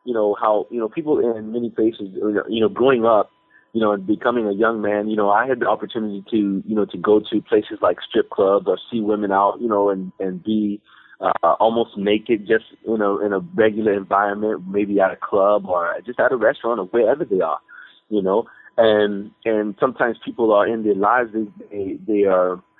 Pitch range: 100-115 Hz